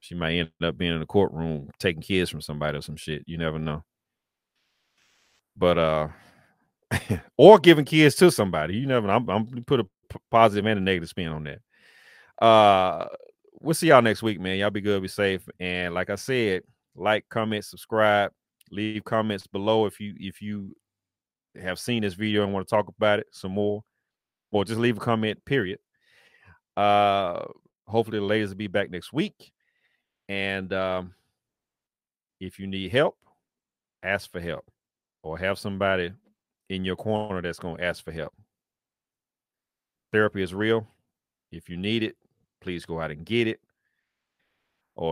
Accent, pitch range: American, 90-105 Hz